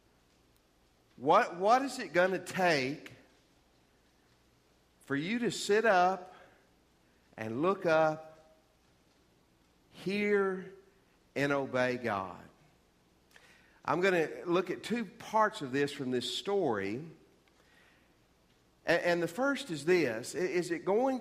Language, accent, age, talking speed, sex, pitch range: English, American, 50-69, 115 wpm, male, 135-190 Hz